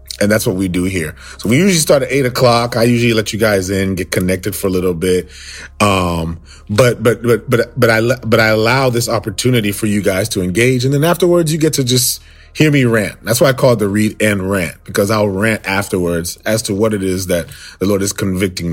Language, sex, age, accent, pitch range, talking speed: English, male, 30-49, American, 85-110 Hz, 240 wpm